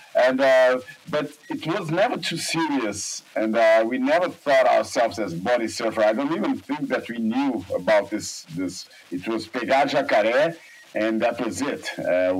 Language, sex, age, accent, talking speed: Portuguese, male, 50-69, Brazilian, 175 wpm